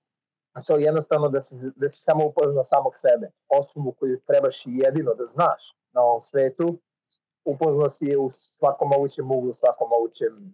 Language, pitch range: Croatian, 140-165 Hz